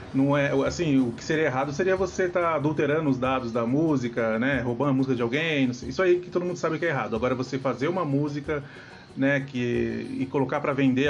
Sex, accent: male, Brazilian